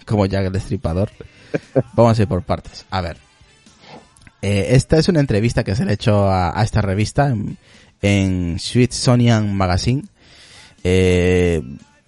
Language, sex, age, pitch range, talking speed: Spanish, male, 30-49, 95-120 Hz, 150 wpm